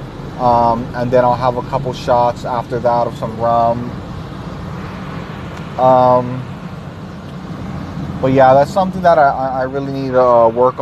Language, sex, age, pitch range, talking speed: English, male, 20-39, 125-155 Hz, 145 wpm